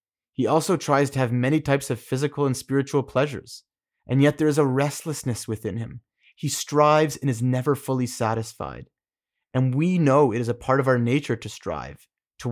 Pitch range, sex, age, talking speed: 115-140 Hz, male, 30-49, 190 wpm